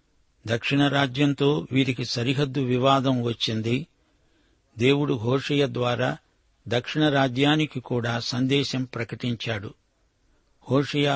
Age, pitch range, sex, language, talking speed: 60-79, 120-145 Hz, male, Telugu, 80 wpm